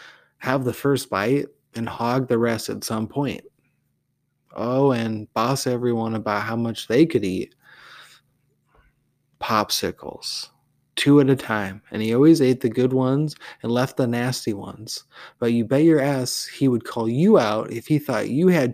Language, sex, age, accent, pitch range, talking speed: English, male, 30-49, American, 105-130 Hz, 170 wpm